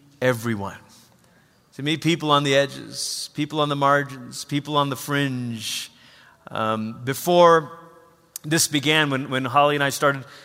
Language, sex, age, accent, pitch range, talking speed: English, male, 30-49, American, 140-195 Hz, 145 wpm